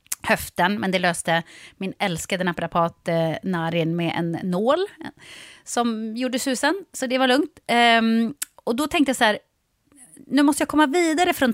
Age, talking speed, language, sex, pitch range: 30-49, 160 wpm, Swedish, female, 185-275 Hz